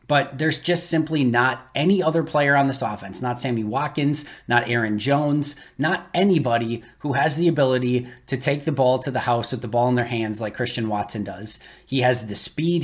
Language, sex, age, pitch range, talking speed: English, male, 20-39, 120-145 Hz, 205 wpm